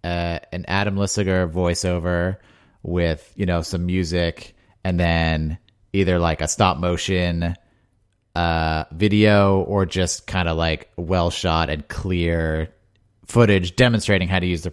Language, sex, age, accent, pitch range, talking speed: English, male, 30-49, American, 90-115 Hz, 140 wpm